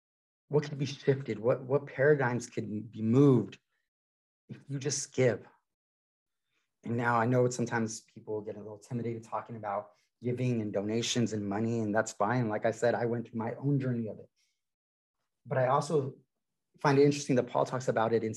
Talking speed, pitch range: 185 wpm, 110-135 Hz